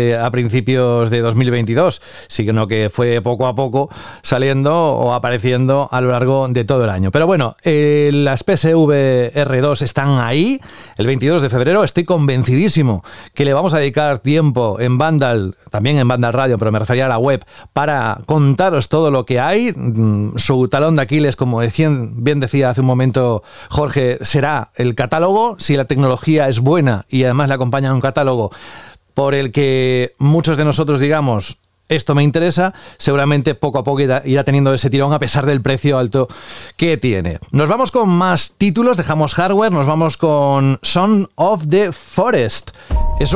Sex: male